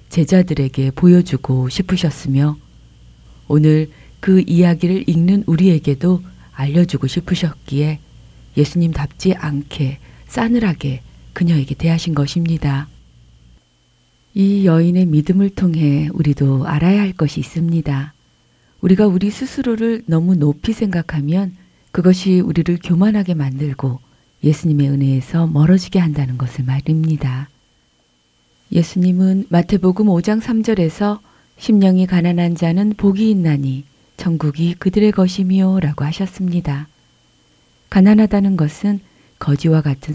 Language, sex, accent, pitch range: Korean, female, native, 140-185 Hz